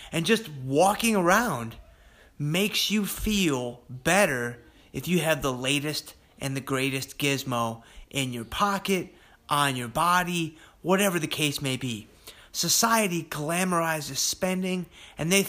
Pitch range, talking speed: 125-180 Hz, 130 wpm